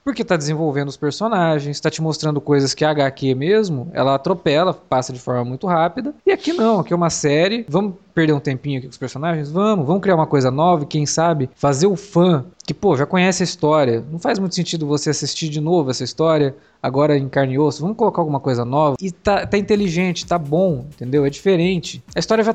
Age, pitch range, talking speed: 20-39, 145-195 Hz, 225 wpm